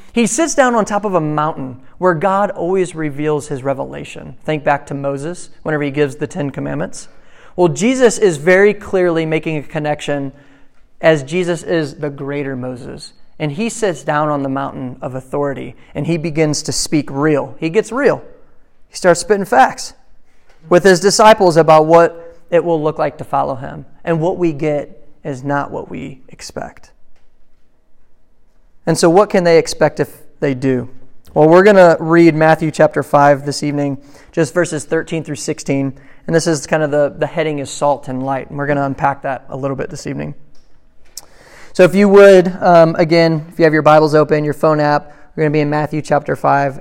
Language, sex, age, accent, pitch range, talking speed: English, male, 30-49, American, 140-170 Hz, 195 wpm